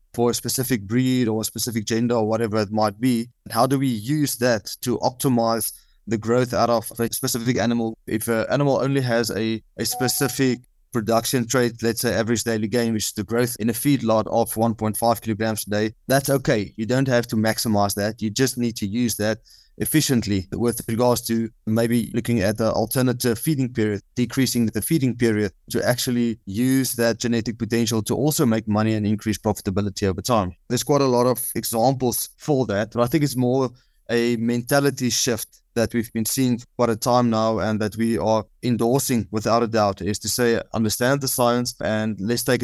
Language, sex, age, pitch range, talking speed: English, male, 20-39, 110-125 Hz, 195 wpm